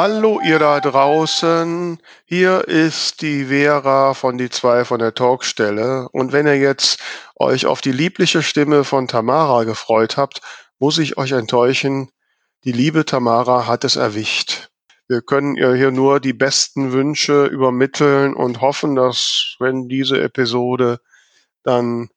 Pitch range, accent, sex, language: 125-145 Hz, German, male, German